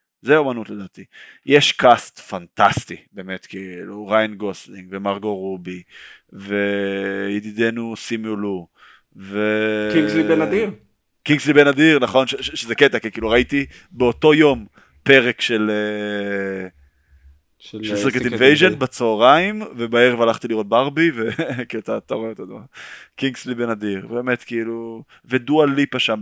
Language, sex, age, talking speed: Hebrew, male, 20-39, 115 wpm